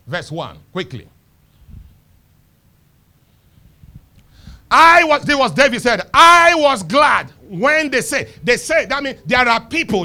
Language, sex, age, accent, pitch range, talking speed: English, male, 50-69, Nigerian, 165-260 Hz, 130 wpm